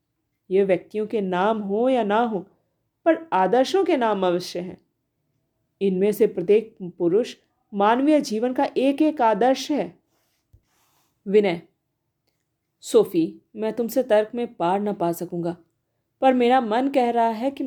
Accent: native